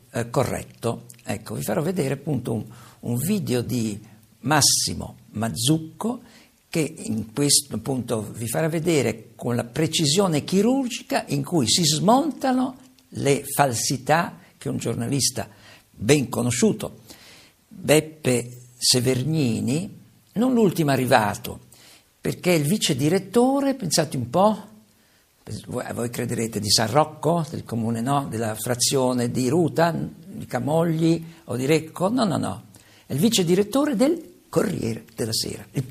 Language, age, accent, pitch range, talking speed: Italian, 50-69, native, 115-175 Hz, 130 wpm